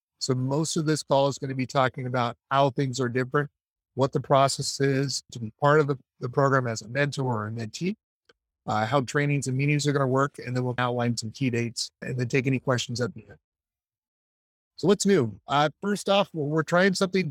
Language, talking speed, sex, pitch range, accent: English, 225 wpm, male, 125-150 Hz, American